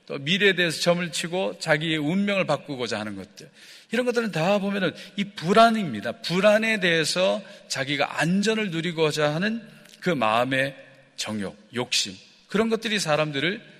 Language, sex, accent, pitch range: Korean, male, native, 135-195 Hz